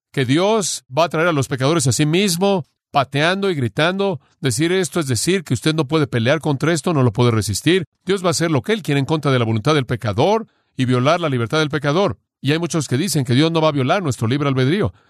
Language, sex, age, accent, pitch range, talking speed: Spanish, male, 40-59, Mexican, 125-160 Hz, 255 wpm